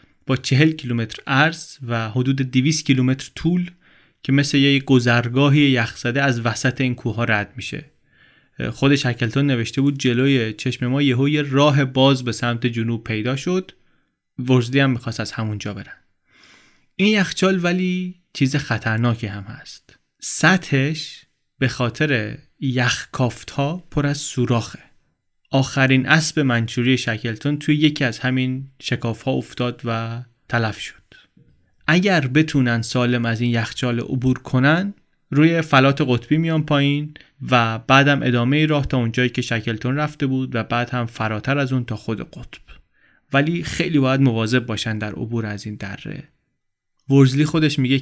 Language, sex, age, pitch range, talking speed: Persian, male, 30-49, 120-145 Hz, 145 wpm